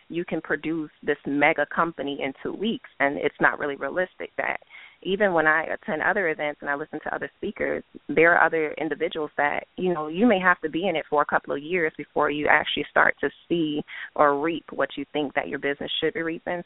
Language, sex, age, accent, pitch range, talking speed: English, female, 20-39, American, 145-165 Hz, 225 wpm